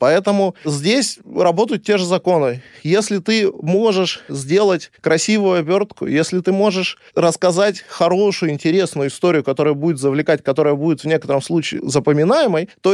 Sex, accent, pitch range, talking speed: male, native, 155-210 Hz, 135 wpm